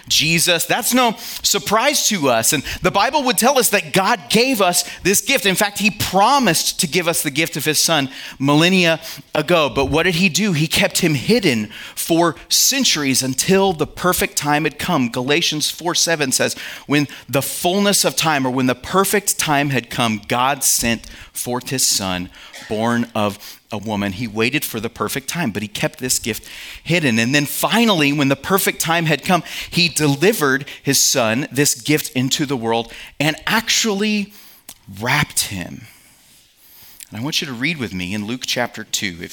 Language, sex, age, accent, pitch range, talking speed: English, male, 30-49, American, 120-175 Hz, 185 wpm